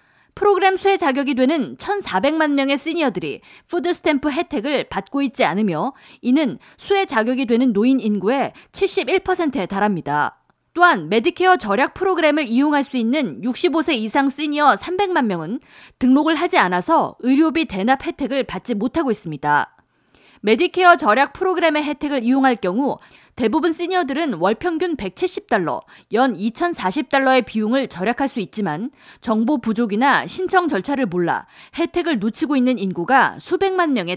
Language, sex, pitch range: Korean, female, 225-325 Hz